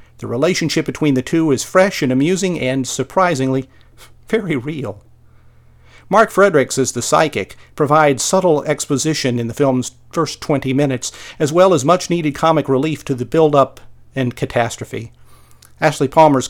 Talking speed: 145 wpm